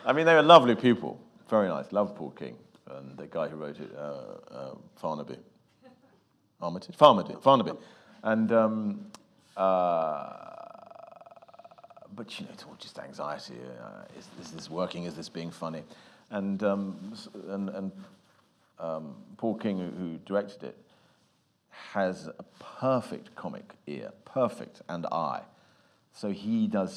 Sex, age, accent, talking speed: male, 40-59, British, 140 wpm